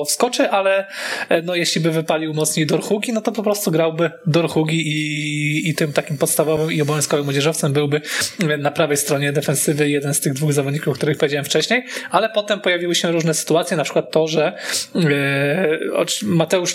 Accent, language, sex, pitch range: native, Polish, male, 150-175 Hz